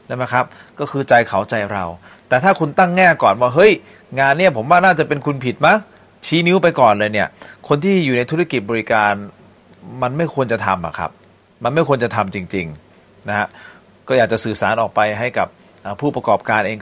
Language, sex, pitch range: Thai, male, 105-140 Hz